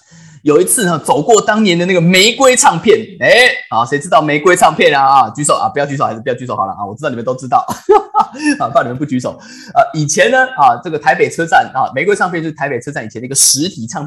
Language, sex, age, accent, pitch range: Chinese, male, 20-39, native, 165-265 Hz